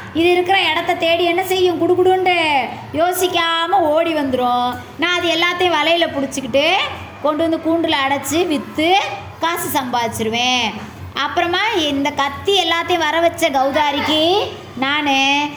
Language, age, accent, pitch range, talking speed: English, 20-39, Indian, 255-330 Hz, 145 wpm